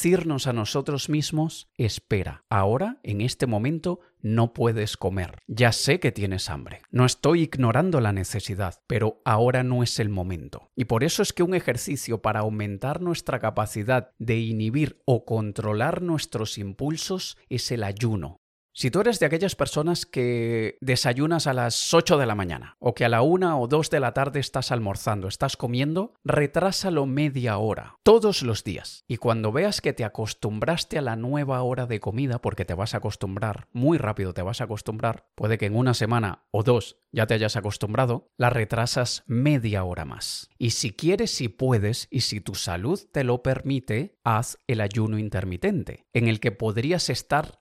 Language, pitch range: Spanish, 110-140 Hz